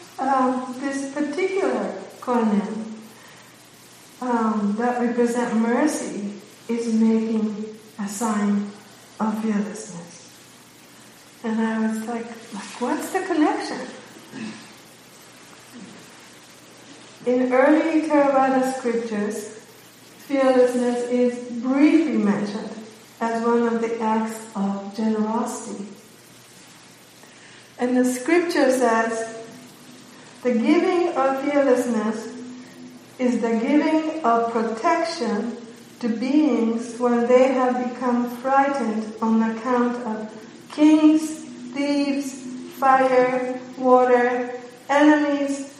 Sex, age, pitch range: female, 60-79, 225-275 Hz